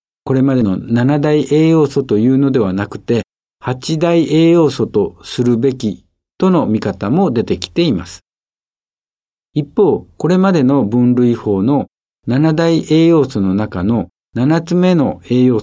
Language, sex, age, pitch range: Japanese, male, 60-79, 110-160 Hz